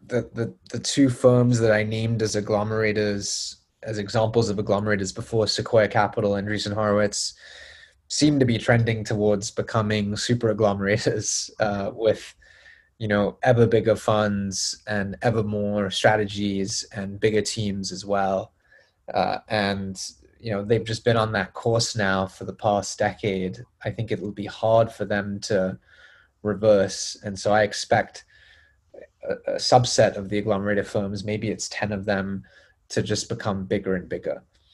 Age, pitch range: 20-39, 100-115 Hz